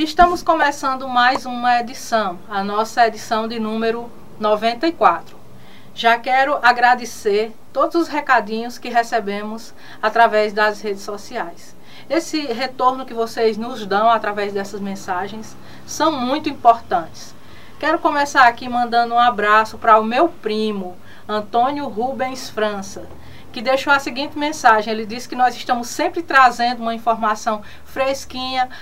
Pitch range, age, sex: 215-255 Hz, 20-39, female